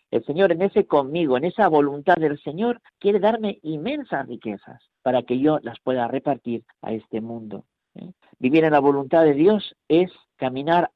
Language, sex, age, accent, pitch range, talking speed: Spanish, male, 50-69, Spanish, 120-165 Hz, 170 wpm